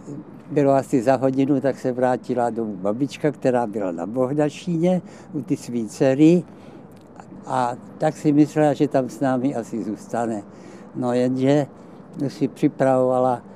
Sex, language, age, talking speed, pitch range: male, Czech, 60-79, 135 wpm, 125-150 Hz